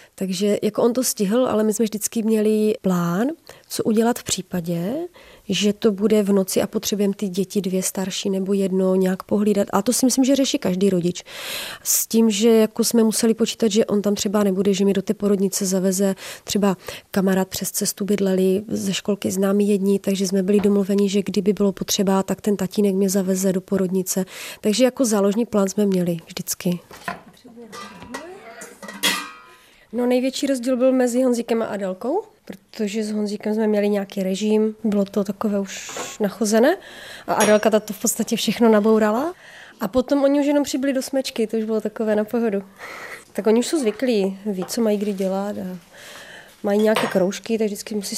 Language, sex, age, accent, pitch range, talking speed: Czech, female, 30-49, native, 195-230 Hz, 180 wpm